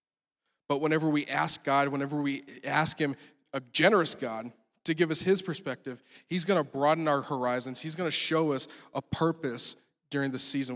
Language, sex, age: English, male, 20-39